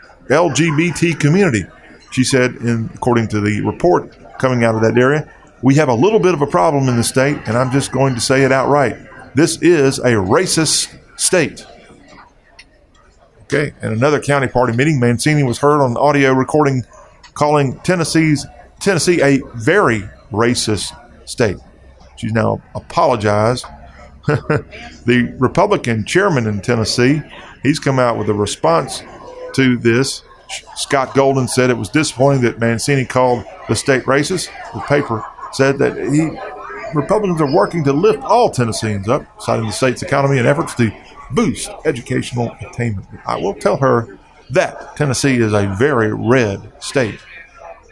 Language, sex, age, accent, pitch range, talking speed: English, male, 40-59, American, 115-145 Hz, 150 wpm